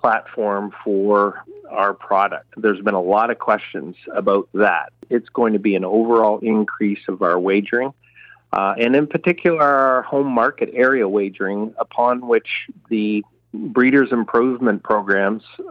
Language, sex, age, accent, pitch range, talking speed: English, male, 40-59, American, 110-155 Hz, 140 wpm